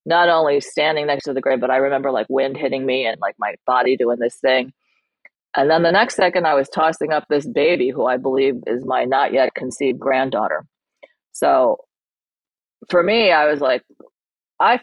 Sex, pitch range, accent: female, 130-175 Hz, American